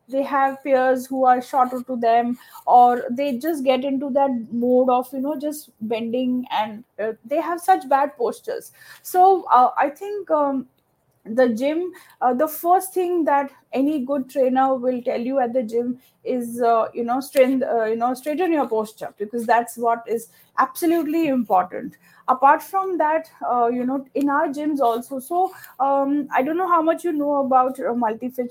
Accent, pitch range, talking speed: Indian, 245-325 Hz, 185 wpm